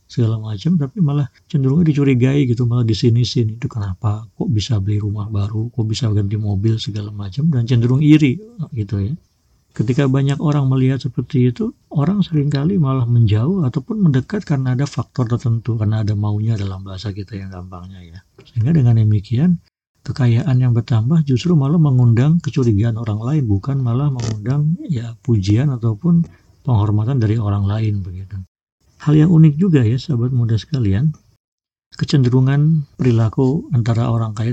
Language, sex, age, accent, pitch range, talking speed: Indonesian, male, 50-69, native, 105-140 Hz, 155 wpm